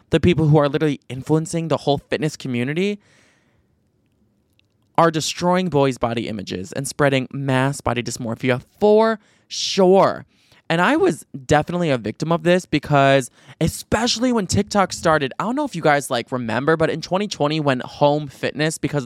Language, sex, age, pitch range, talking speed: English, male, 20-39, 130-155 Hz, 155 wpm